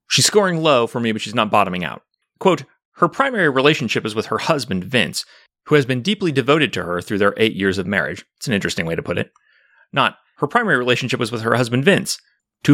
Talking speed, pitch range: 230 wpm, 110-155 Hz